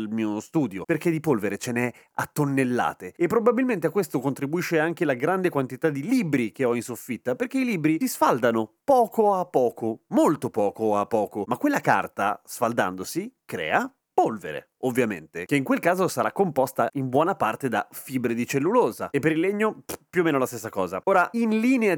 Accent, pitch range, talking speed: native, 115-160 Hz, 190 wpm